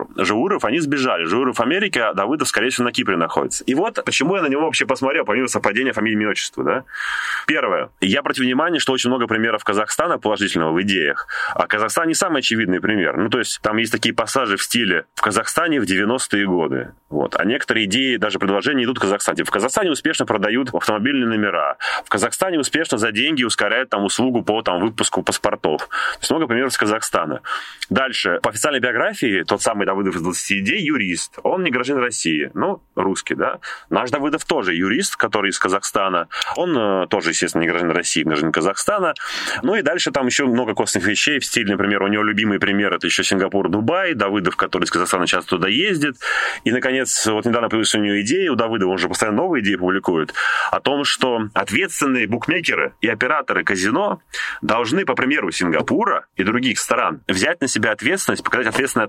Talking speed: 190 wpm